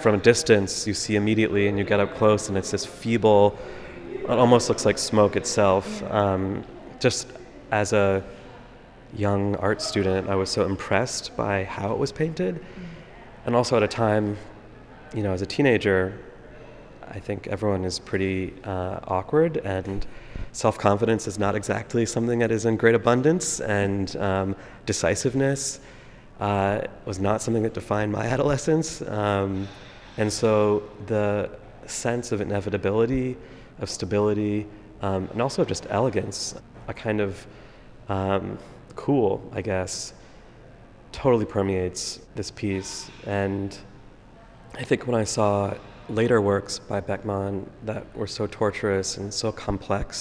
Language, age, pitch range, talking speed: English, 30-49, 100-115 Hz, 140 wpm